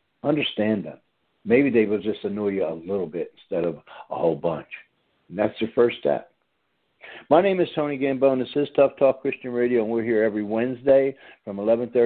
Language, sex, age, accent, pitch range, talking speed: English, male, 60-79, American, 105-130 Hz, 195 wpm